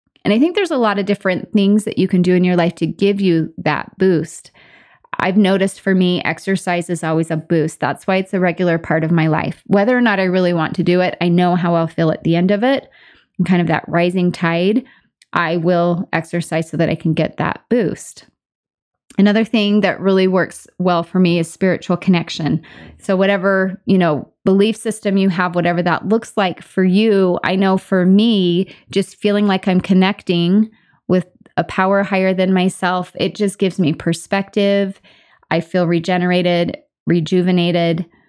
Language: English